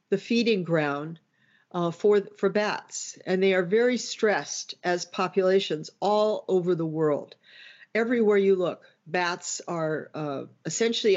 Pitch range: 170-205 Hz